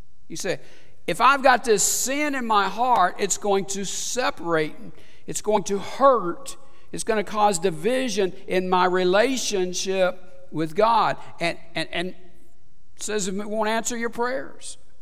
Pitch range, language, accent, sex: 170-210 Hz, English, American, male